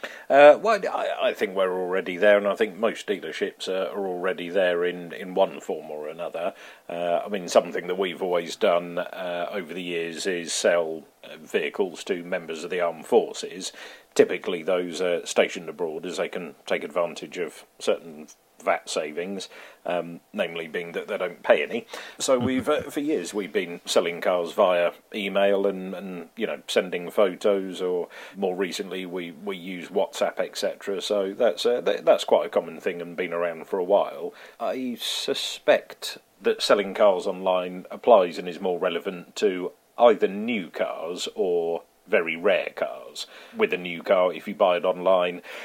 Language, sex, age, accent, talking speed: English, male, 40-59, British, 175 wpm